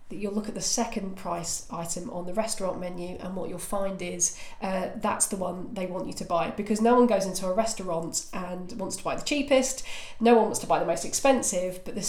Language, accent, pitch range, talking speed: English, British, 180-215 Hz, 240 wpm